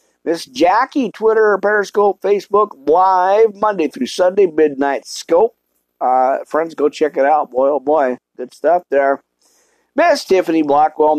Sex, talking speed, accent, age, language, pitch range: male, 140 wpm, American, 50-69, English, 125-180 Hz